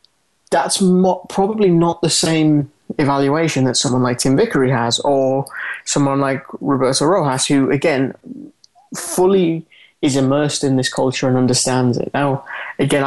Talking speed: 140 wpm